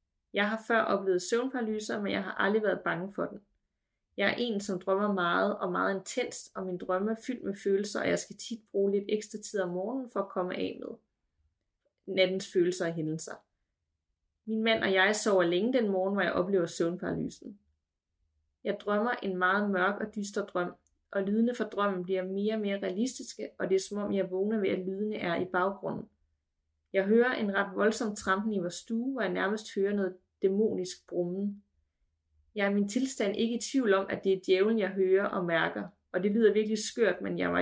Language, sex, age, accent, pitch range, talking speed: Danish, female, 30-49, native, 180-215 Hz, 205 wpm